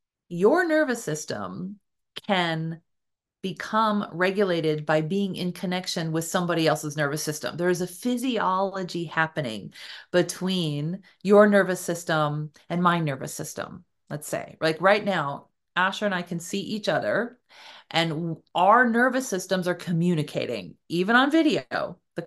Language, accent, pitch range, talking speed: English, American, 160-210 Hz, 135 wpm